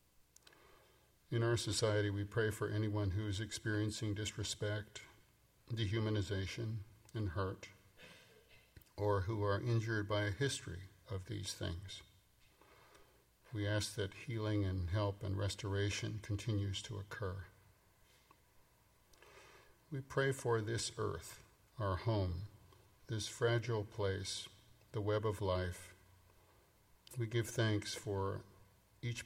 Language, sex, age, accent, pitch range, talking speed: English, male, 50-69, American, 100-115 Hz, 110 wpm